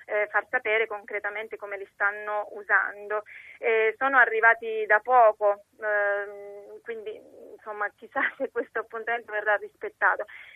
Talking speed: 125 wpm